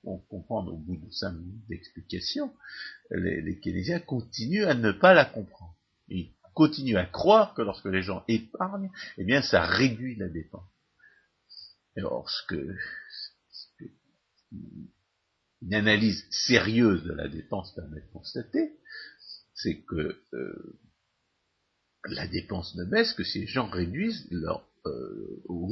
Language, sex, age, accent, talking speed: French, male, 50-69, French, 135 wpm